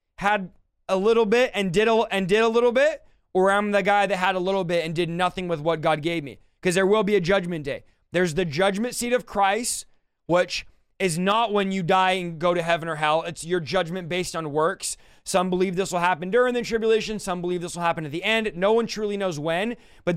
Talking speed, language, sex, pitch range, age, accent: 240 wpm, English, male, 170-200 Hz, 20-39, American